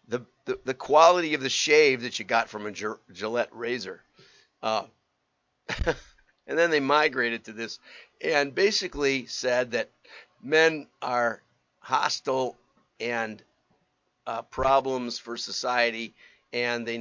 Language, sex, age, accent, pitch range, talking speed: English, male, 50-69, American, 115-140 Hz, 125 wpm